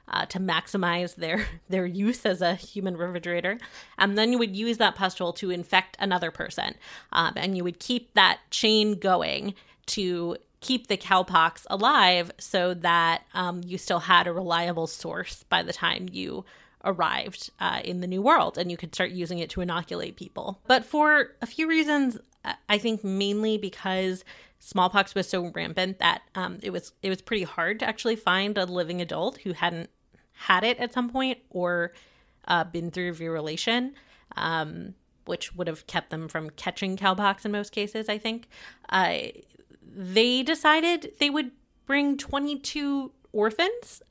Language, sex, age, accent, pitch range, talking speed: English, female, 20-39, American, 180-230 Hz, 165 wpm